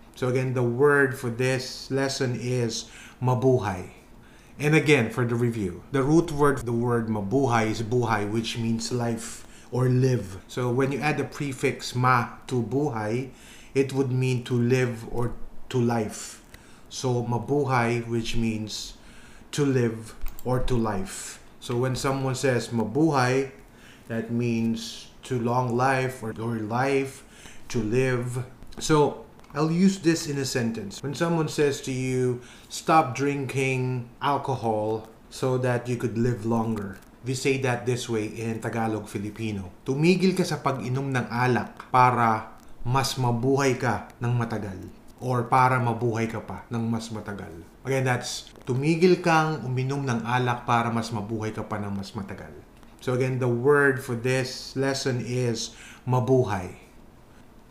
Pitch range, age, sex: 115-130 Hz, 20-39, male